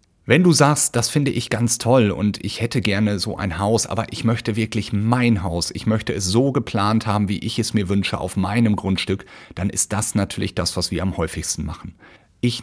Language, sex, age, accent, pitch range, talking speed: German, male, 40-59, German, 95-120 Hz, 220 wpm